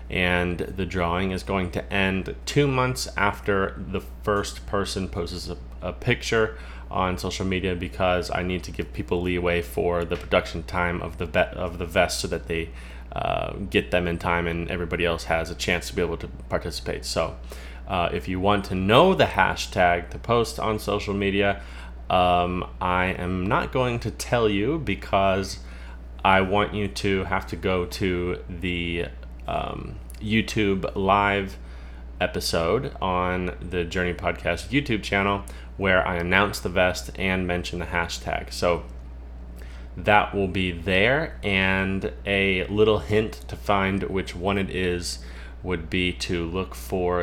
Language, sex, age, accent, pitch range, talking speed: English, male, 30-49, American, 85-100 Hz, 160 wpm